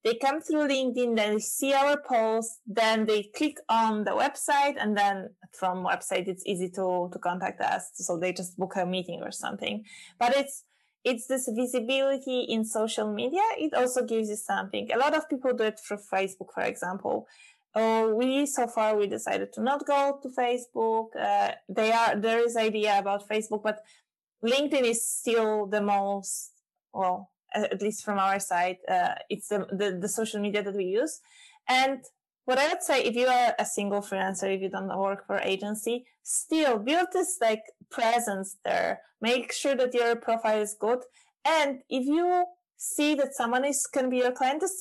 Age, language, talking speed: 20-39, English, 185 wpm